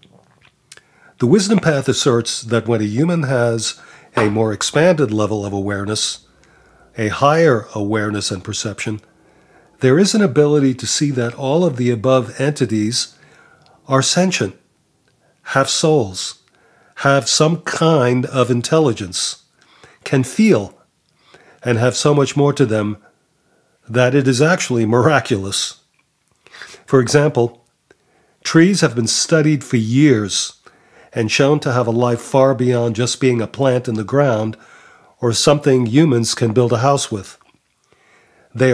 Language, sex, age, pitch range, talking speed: English, male, 40-59, 115-145 Hz, 135 wpm